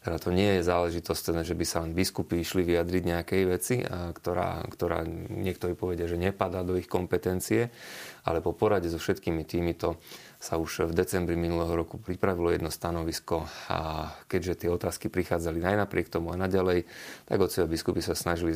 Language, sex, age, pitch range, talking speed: Slovak, male, 30-49, 85-95 Hz, 170 wpm